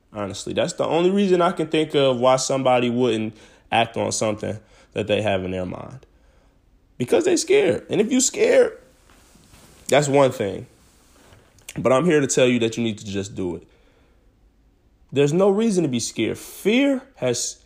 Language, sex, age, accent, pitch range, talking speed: English, male, 20-39, American, 105-140 Hz, 175 wpm